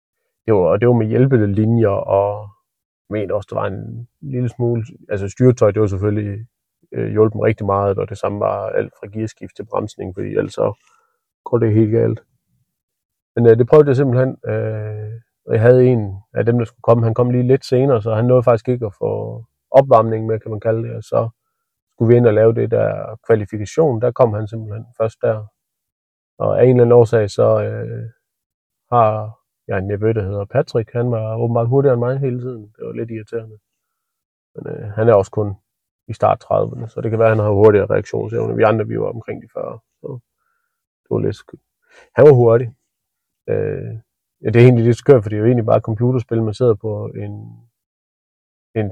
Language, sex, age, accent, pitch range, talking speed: Danish, male, 30-49, native, 110-125 Hz, 205 wpm